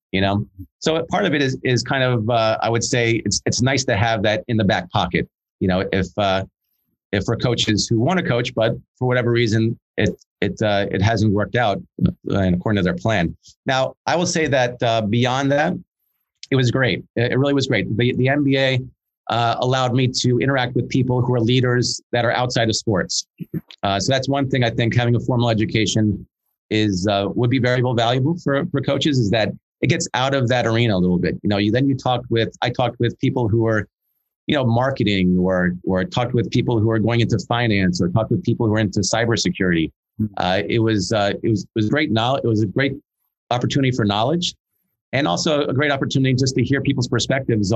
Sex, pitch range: male, 105-130 Hz